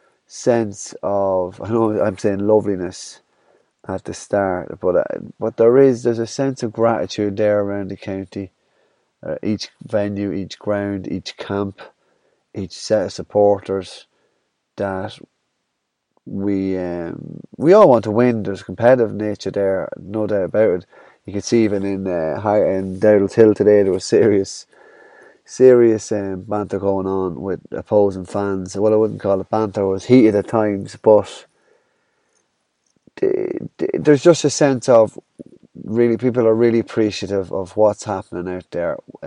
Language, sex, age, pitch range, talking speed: English, male, 30-49, 95-115 Hz, 160 wpm